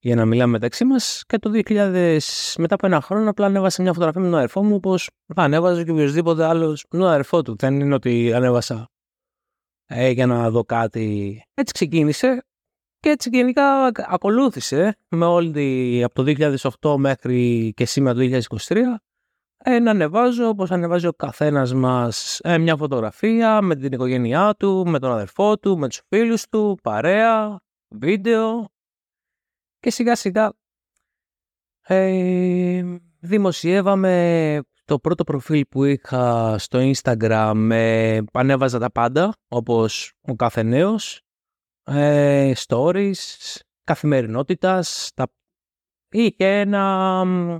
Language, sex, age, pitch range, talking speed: Greek, male, 20-39, 130-195 Hz, 135 wpm